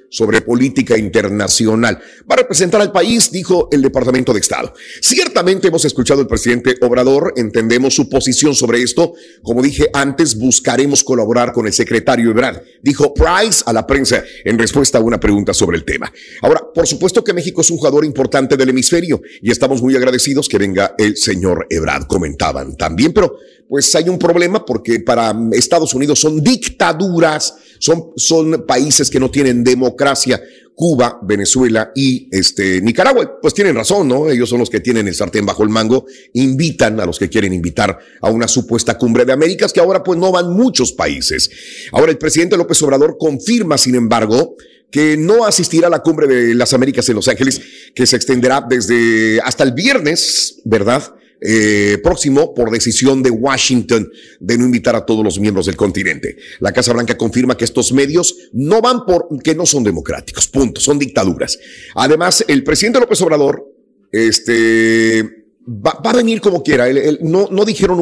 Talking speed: 175 wpm